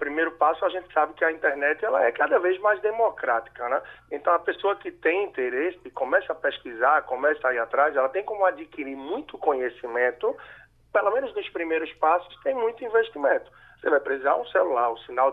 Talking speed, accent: 195 wpm, Brazilian